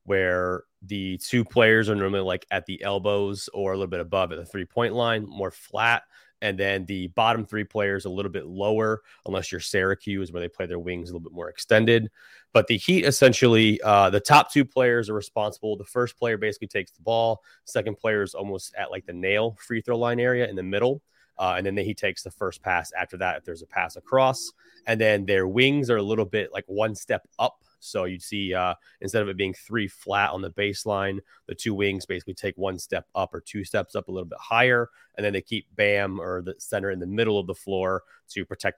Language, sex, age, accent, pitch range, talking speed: English, male, 30-49, American, 95-115 Hz, 230 wpm